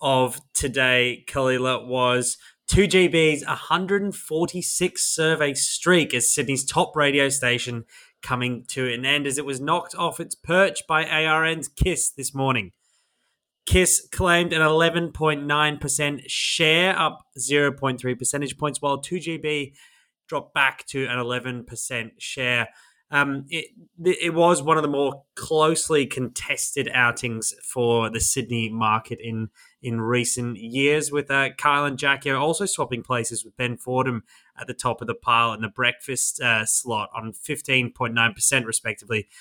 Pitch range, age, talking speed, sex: 125-155 Hz, 20-39, 140 wpm, male